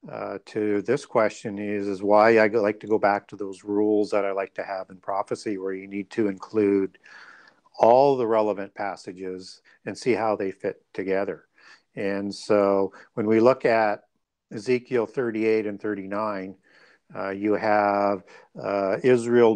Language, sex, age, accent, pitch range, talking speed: English, male, 50-69, American, 100-125 Hz, 160 wpm